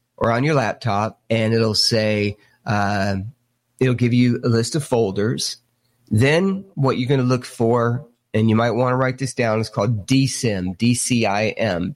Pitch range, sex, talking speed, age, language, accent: 115-130 Hz, male, 170 wpm, 30-49, English, American